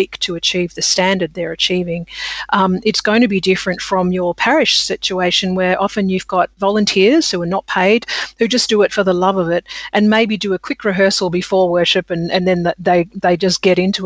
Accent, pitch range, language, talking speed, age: Australian, 180-220 Hz, English, 215 wpm, 40-59